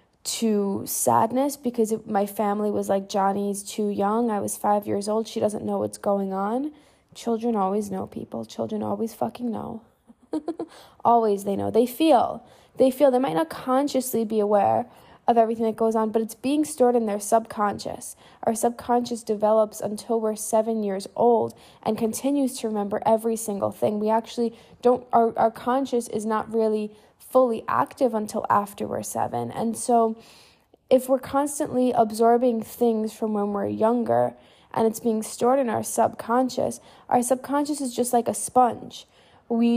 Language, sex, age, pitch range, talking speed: English, female, 10-29, 210-245 Hz, 165 wpm